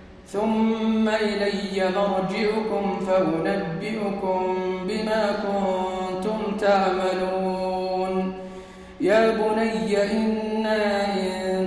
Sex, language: male, Arabic